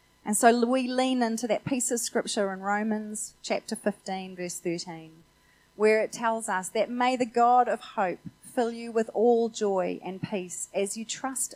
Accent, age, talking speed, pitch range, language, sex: Australian, 30-49, 180 wpm, 180-235 Hz, English, female